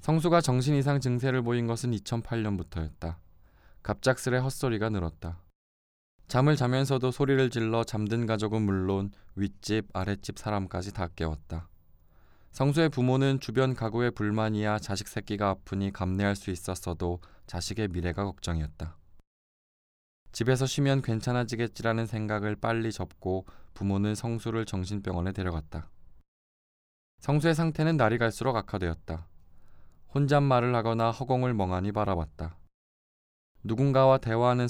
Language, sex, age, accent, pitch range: Korean, male, 20-39, native, 90-120 Hz